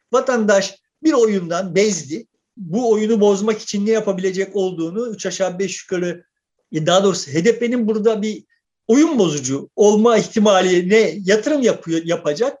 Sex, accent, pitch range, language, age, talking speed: male, native, 205-290 Hz, Turkish, 50-69, 130 wpm